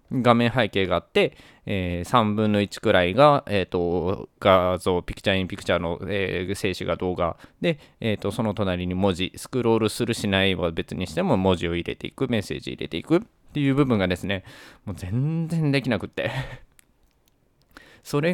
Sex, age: male, 20-39